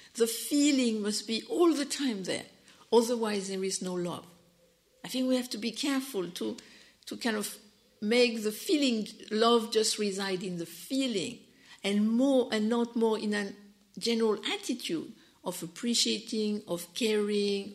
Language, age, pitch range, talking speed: English, 60-79, 200-245 Hz, 155 wpm